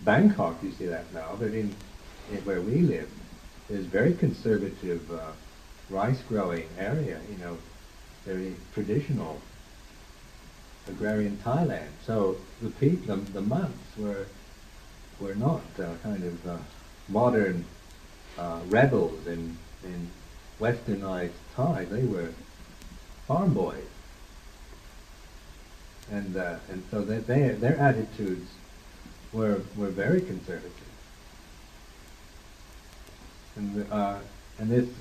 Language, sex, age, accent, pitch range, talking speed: English, male, 60-79, American, 85-110 Hz, 105 wpm